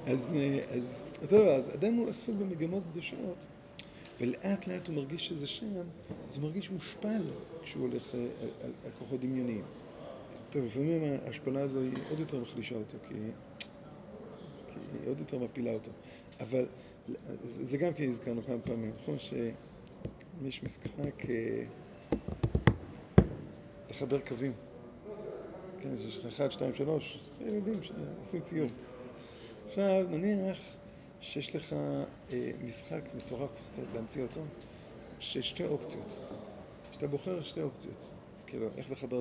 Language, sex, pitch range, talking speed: Hebrew, male, 125-175 Hz, 85 wpm